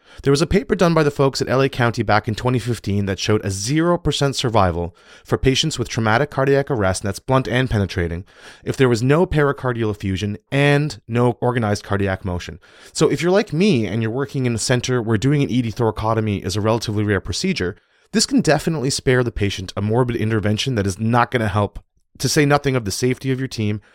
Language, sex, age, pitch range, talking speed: English, male, 30-49, 105-145 Hz, 215 wpm